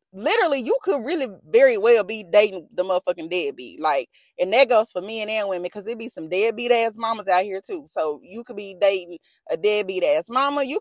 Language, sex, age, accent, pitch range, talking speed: English, female, 20-39, American, 215-285 Hz, 215 wpm